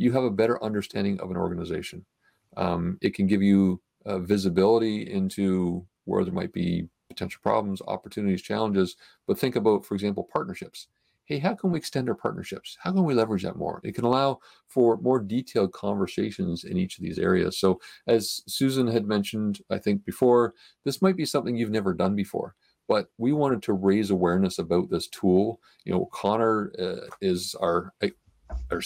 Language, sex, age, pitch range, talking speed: English, male, 40-59, 95-125 Hz, 180 wpm